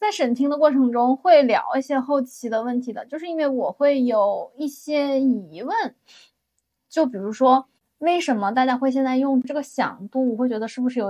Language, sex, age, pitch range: Chinese, female, 10-29, 210-265 Hz